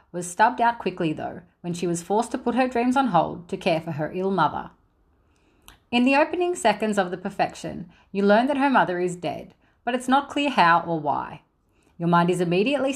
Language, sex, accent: English, female, Australian